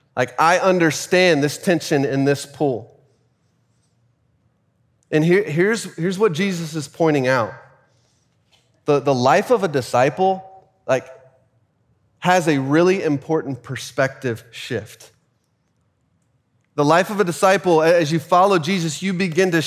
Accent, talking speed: American, 125 wpm